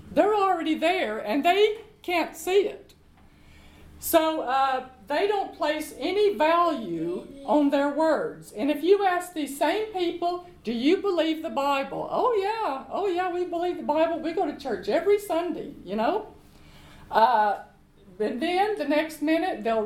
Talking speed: 160 wpm